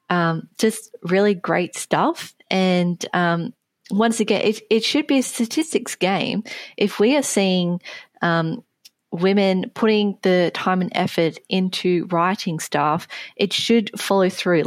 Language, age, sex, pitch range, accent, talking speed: English, 20-39, female, 155-195 Hz, Australian, 140 wpm